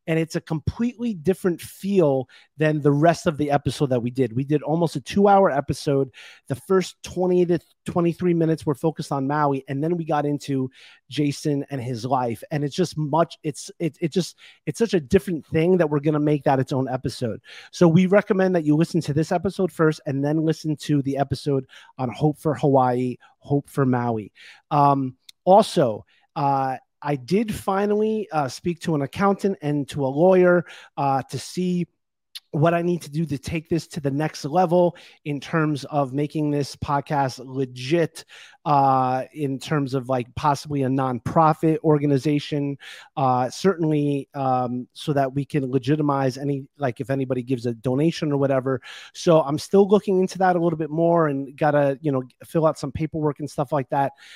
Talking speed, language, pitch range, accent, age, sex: 190 wpm, English, 140-170 Hz, American, 30-49, male